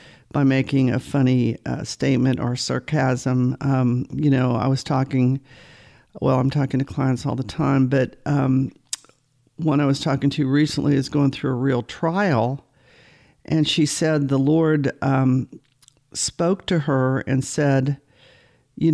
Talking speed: 150 wpm